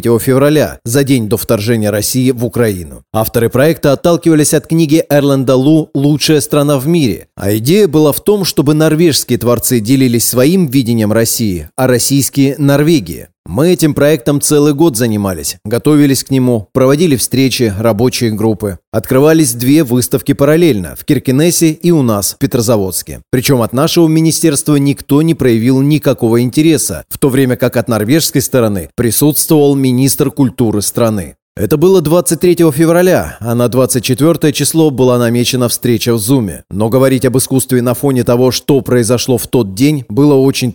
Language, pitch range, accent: Russian, 115-145 Hz, native